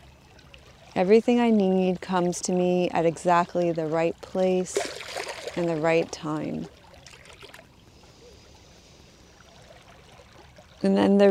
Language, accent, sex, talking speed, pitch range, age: English, American, female, 95 wpm, 170-185 Hz, 30-49